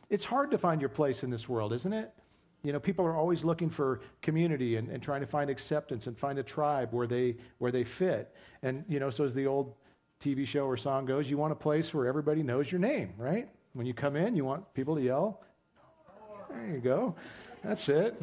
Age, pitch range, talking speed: 40-59, 130-160 Hz, 230 wpm